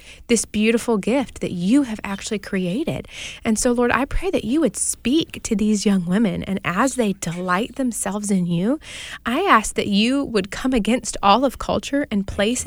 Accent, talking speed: American, 190 wpm